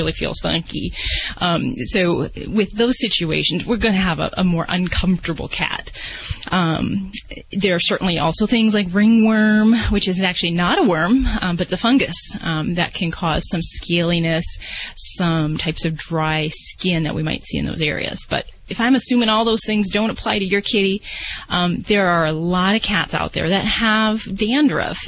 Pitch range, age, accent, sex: 180-230 Hz, 30-49, American, female